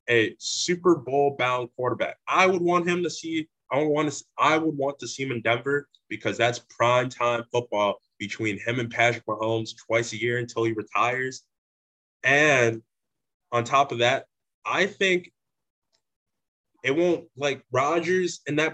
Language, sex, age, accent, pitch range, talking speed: English, male, 20-39, American, 115-155 Hz, 165 wpm